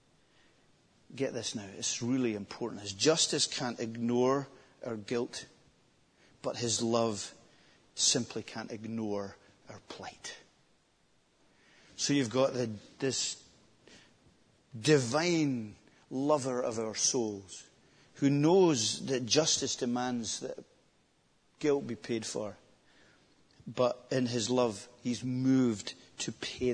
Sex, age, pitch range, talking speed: male, 40-59, 115-140 Hz, 105 wpm